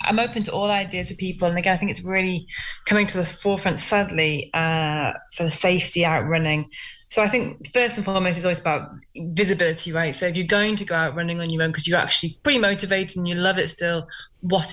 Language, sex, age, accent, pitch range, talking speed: English, female, 20-39, British, 165-190 Hz, 230 wpm